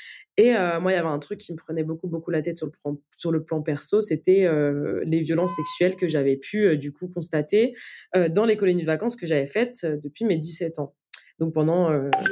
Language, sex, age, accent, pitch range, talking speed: French, female, 20-39, French, 155-190 Hz, 245 wpm